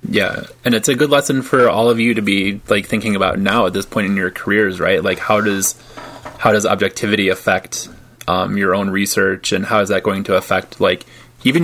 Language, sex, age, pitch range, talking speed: English, male, 20-39, 105-150 Hz, 220 wpm